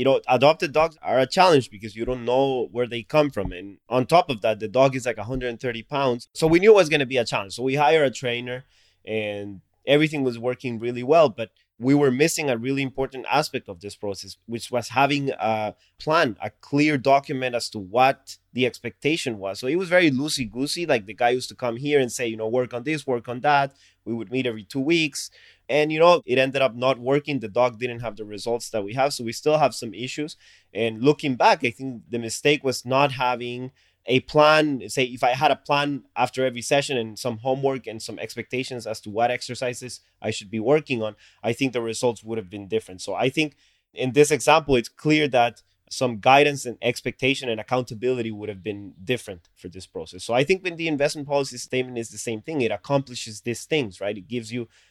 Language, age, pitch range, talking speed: English, 20-39, 110-140 Hz, 230 wpm